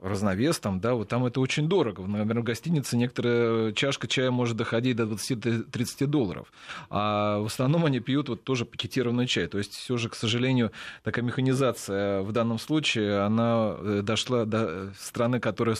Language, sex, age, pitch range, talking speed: Russian, male, 30-49, 105-125 Hz, 165 wpm